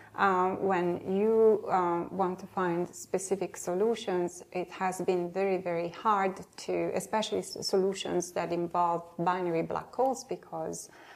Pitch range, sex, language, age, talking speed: 175-210 Hz, female, Danish, 30-49, 130 wpm